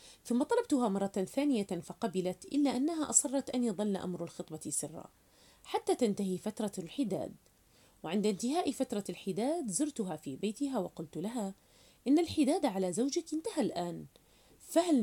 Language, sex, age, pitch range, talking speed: Arabic, female, 30-49, 185-275 Hz, 130 wpm